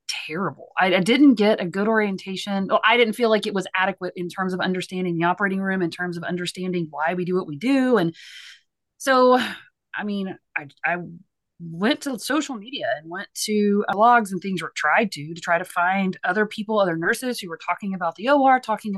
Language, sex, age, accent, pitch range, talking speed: English, female, 30-49, American, 175-215 Hz, 210 wpm